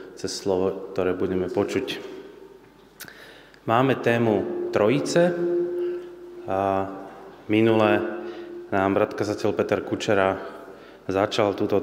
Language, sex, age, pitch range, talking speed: Slovak, male, 30-49, 100-140 Hz, 80 wpm